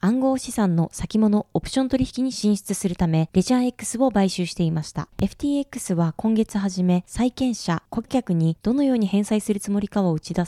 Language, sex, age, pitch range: Japanese, female, 20-39, 175-240 Hz